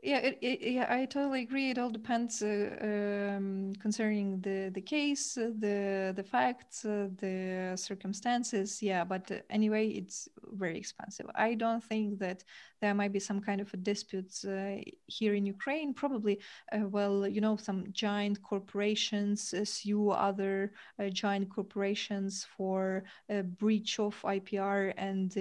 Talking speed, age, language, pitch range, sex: 150 wpm, 20-39, Ukrainian, 195-220 Hz, female